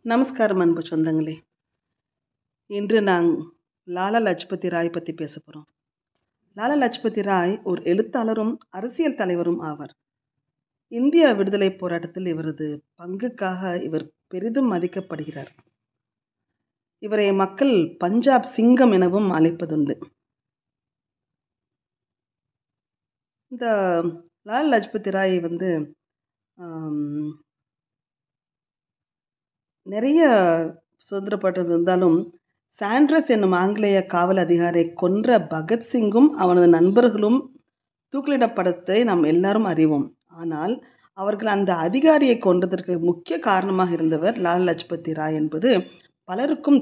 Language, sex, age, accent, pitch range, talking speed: Tamil, female, 30-49, native, 165-220 Hz, 80 wpm